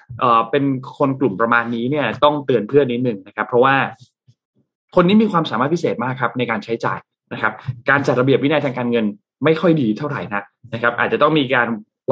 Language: Thai